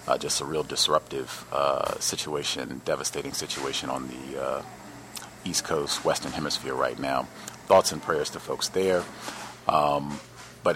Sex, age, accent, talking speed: male, 30-49, American, 145 wpm